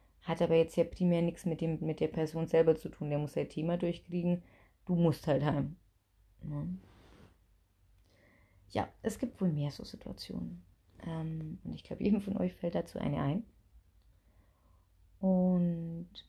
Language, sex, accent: German, female, German